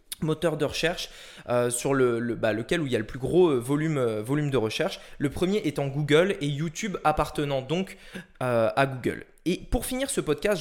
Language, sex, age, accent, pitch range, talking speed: French, male, 20-39, French, 140-200 Hz, 210 wpm